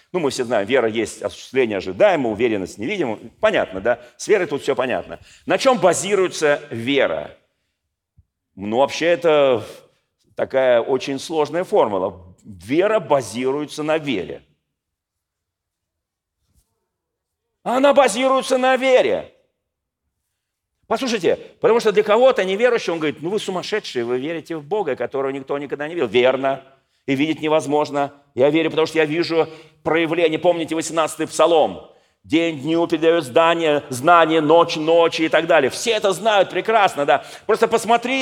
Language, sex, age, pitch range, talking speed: Russian, male, 40-59, 130-195 Hz, 135 wpm